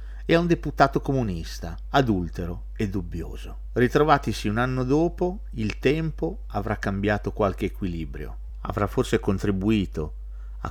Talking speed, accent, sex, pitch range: 120 wpm, native, male, 85-110 Hz